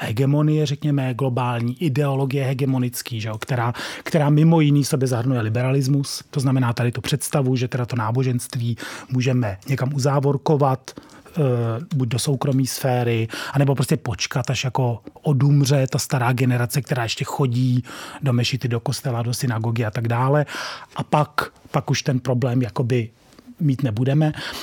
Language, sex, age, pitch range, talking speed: Czech, male, 30-49, 125-150 Hz, 150 wpm